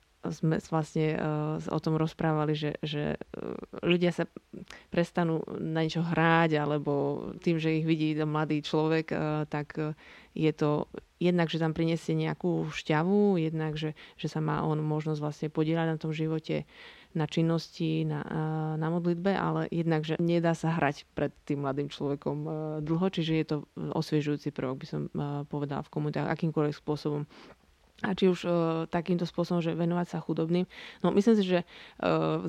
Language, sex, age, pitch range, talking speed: Slovak, female, 20-39, 155-175 Hz, 155 wpm